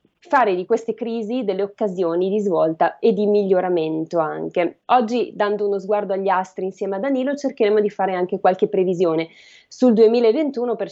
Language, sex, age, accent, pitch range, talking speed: Italian, female, 20-39, native, 180-230 Hz, 165 wpm